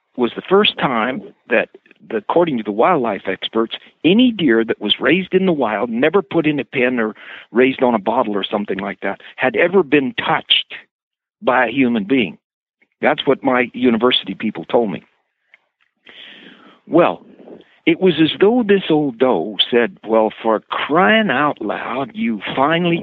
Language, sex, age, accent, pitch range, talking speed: English, male, 60-79, American, 125-180 Hz, 165 wpm